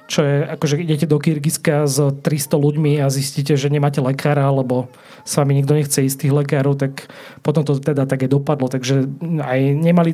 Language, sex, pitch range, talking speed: Slovak, male, 130-155 Hz, 195 wpm